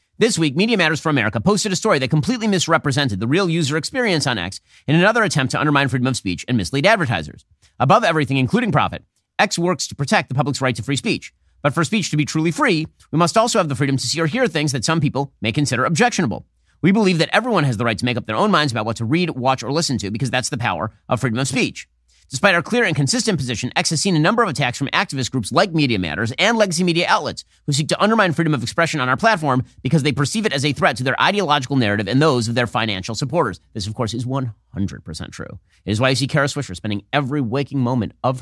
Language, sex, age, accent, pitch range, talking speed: English, male, 30-49, American, 115-160 Hz, 255 wpm